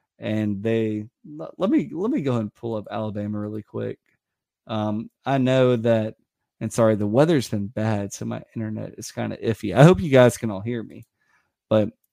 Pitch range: 110-140 Hz